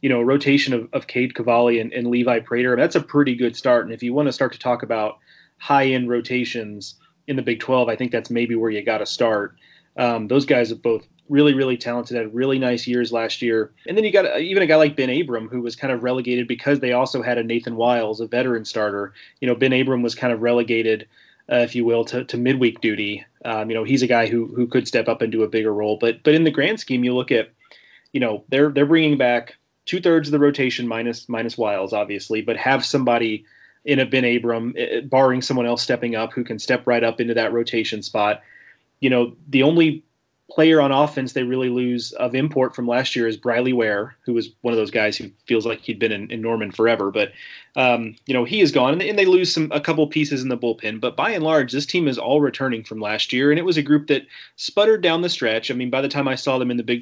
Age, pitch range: 30-49, 115-135 Hz